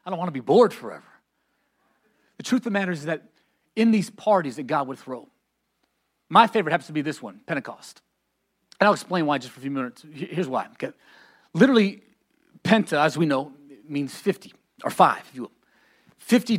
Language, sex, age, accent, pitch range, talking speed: English, male, 40-59, American, 150-205 Hz, 195 wpm